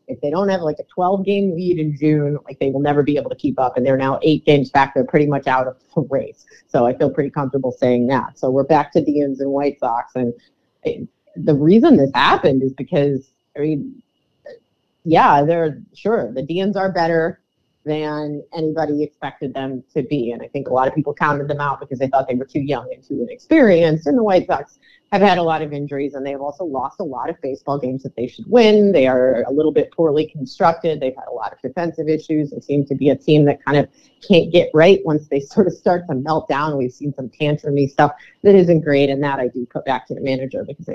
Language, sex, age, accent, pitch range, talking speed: English, female, 30-49, American, 140-165 Hz, 240 wpm